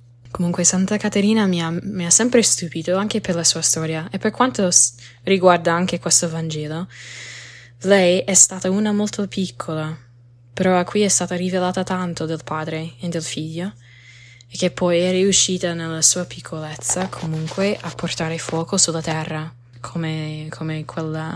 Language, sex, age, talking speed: Italian, female, 10-29, 155 wpm